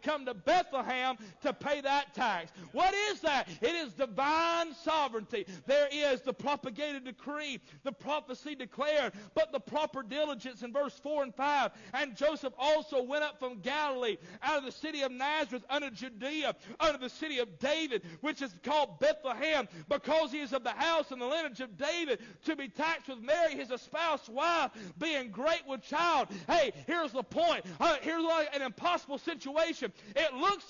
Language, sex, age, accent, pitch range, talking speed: English, male, 50-69, American, 260-325 Hz, 175 wpm